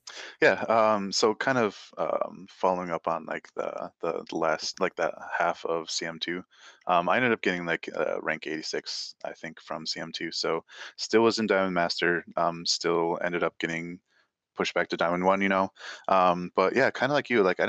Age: 20-39